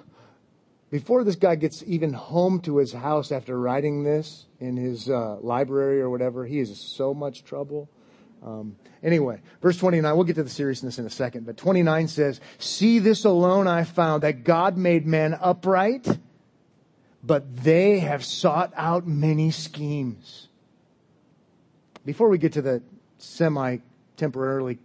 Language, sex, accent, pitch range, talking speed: English, male, American, 145-220 Hz, 150 wpm